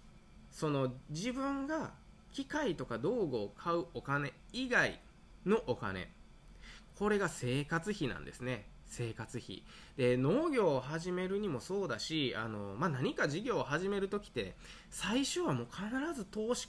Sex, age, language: male, 20-39, Japanese